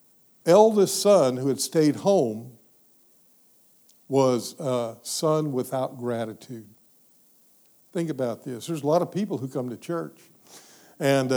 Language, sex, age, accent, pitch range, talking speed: English, male, 60-79, American, 125-165 Hz, 125 wpm